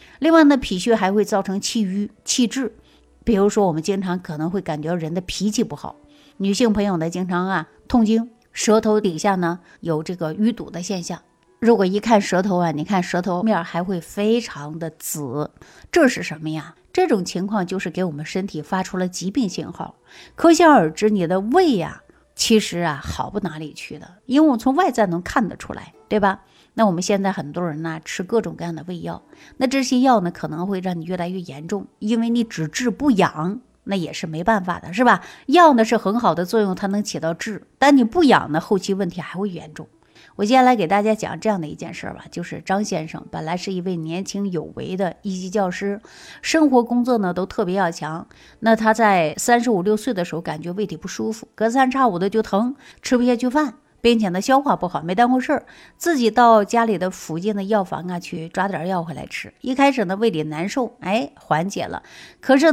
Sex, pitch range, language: female, 175-235 Hz, Chinese